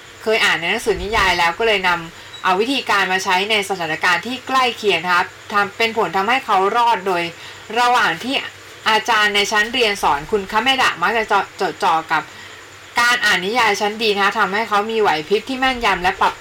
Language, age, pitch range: Thai, 20-39, 185-235 Hz